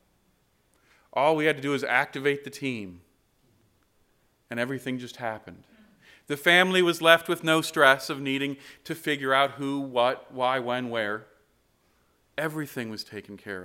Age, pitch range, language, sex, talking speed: 40-59, 110-165 Hz, English, male, 150 wpm